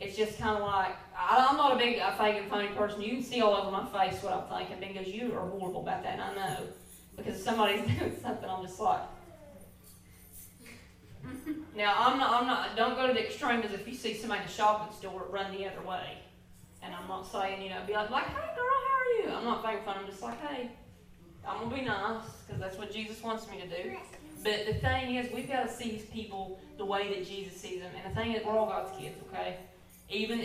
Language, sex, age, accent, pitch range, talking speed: English, female, 20-39, American, 190-220 Hz, 240 wpm